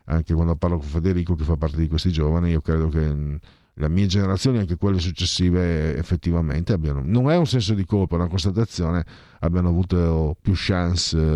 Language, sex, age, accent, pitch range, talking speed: Italian, male, 50-69, native, 80-100 Hz, 185 wpm